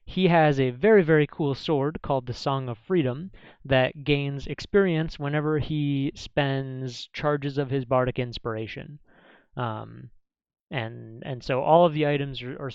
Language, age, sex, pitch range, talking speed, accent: English, 30-49, male, 120-150 Hz, 155 wpm, American